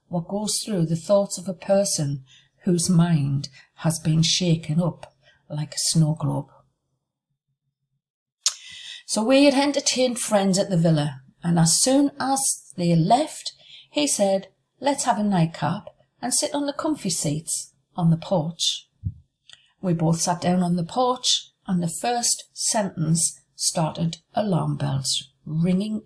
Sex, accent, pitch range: female, British, 145-200 Hz